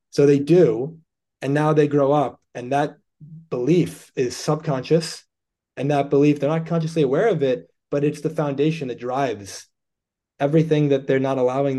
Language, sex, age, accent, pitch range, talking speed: English, male, 20-39, American, 125-150 Hz, 170 wpm